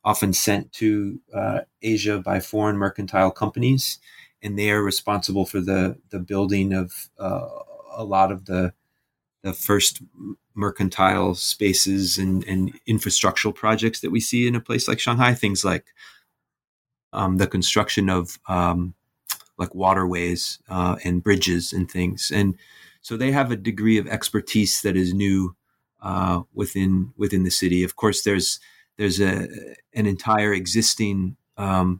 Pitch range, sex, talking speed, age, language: 95-105 Hz, male, 145 wpm, 30-49, English